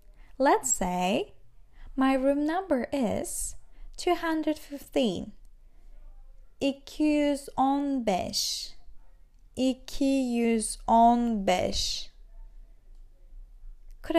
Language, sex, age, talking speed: Turkish, female, 10-29, 40 wpm